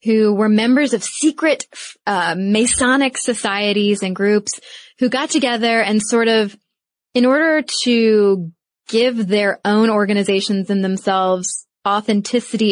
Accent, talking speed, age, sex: American, 125 wpm, 20-39, female